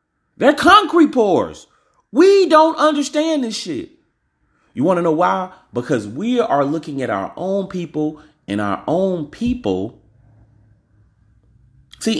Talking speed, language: 130 wpm, English